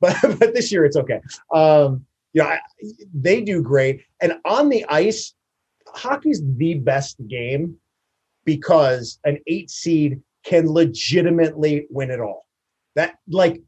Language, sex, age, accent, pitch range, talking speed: English, male, 30-49, American, 145-195 Hz, 135 wpm